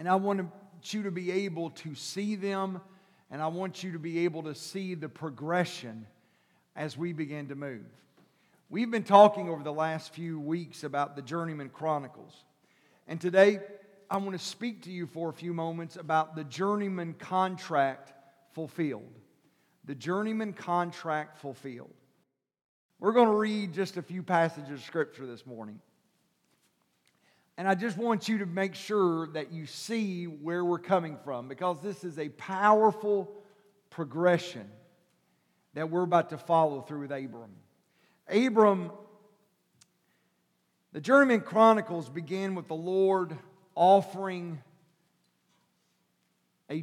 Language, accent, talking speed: English, American, 140 wpm